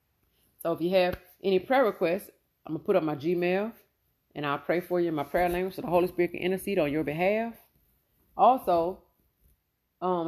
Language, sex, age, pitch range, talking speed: English, female, 40-59, 150-210 Hz, 185 wpm